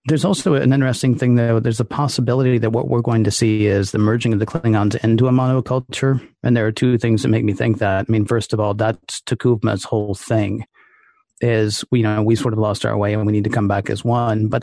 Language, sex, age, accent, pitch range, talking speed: English, male, 40-59, American, 110-130 Hz, 250 wpm